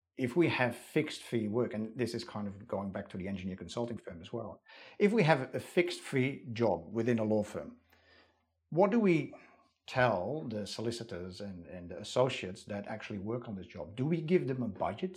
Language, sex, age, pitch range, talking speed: English, male, 50-69, 105-140 Hz, 210 wpm